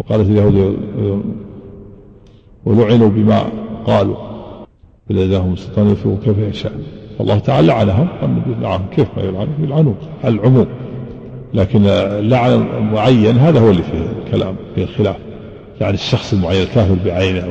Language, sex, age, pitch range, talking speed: Arabic, male, 50-69, 100-115 Hz, 115 wpm